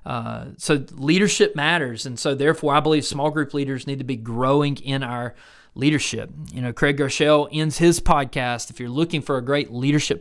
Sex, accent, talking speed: male, American, 195 wpm